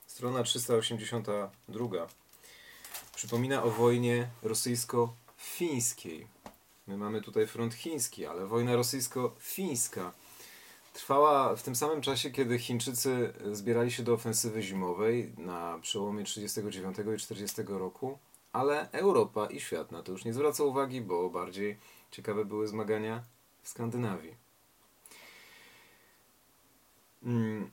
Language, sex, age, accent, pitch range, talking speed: Polish, male, 40-59, native, 105-120 Hz, 110 wpm